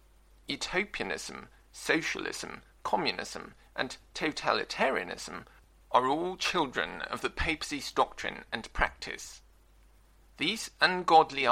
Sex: male